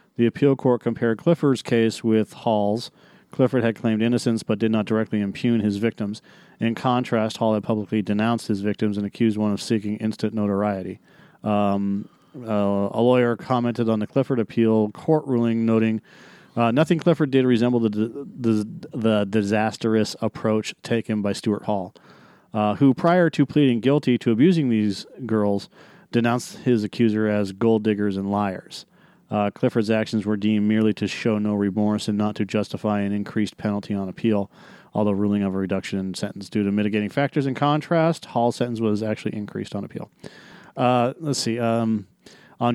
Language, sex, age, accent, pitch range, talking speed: English, male, 40-59, American, 105-120 Hz, 170 wpm